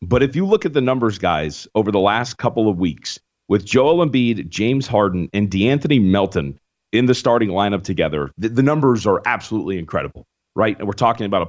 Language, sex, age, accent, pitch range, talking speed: English, male, 30-49, American, 100-135 Hz, 205 wpm